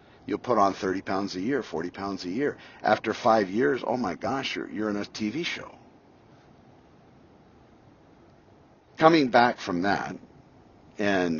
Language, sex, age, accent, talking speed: English, male, 60-79, American, 145 wpm